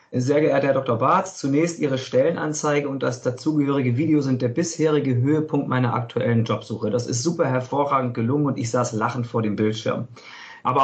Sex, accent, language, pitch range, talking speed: male, German, German, 125-145 Hz, 175 wpm